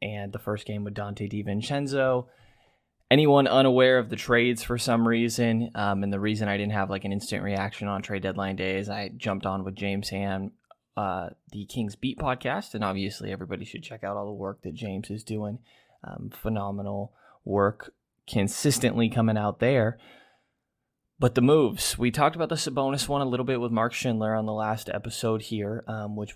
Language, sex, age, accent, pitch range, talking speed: English, male, 20-39, American, 105-115 Hz, 190 wpm